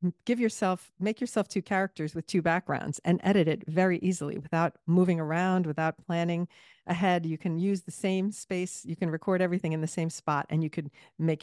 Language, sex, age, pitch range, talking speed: English, female, 50-69, 155-195 Hz, 200 wpm